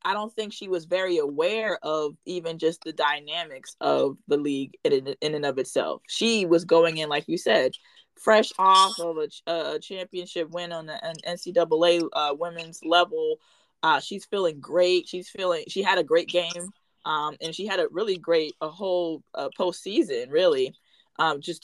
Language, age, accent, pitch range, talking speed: English, 20-39, American, 160-210 Hz, 175 wpm